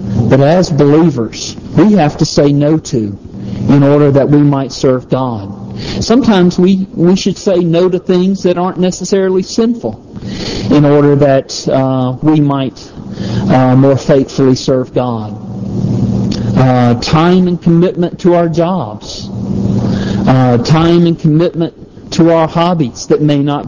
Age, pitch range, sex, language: 50-69, 125-165 Hz, male, English